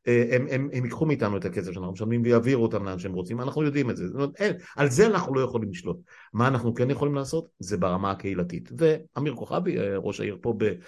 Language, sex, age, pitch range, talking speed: Hebrew, male, 50-69, 110-135 Hz, 200 wpm